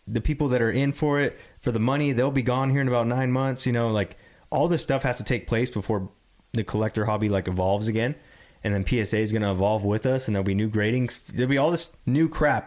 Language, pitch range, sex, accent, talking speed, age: English, 100-130 Hz, male, American, 260 wpm, 20-39